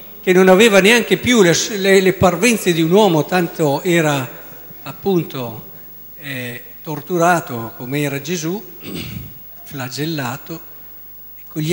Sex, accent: male, native